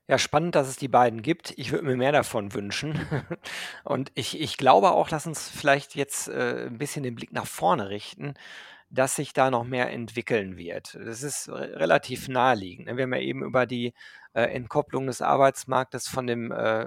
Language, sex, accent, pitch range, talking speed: German, male, German, 120-140 Hz, 180 wpm